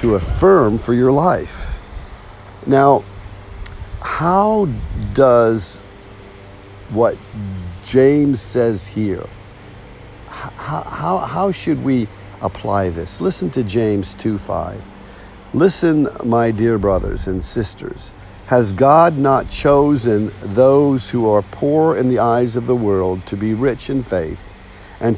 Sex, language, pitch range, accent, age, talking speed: male, English, 100-130 Hz, American, 50-69, 110 wpm